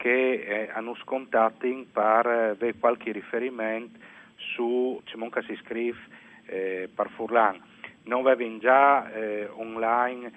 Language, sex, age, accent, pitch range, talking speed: Italian, male, 40-59, native, 110-125 Hz, 120 wpm